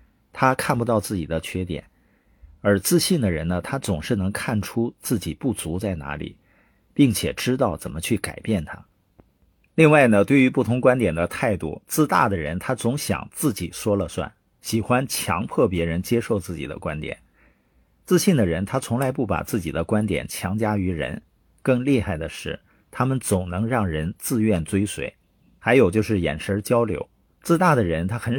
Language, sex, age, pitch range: Chinese, male, 50-69, 90-120 Hz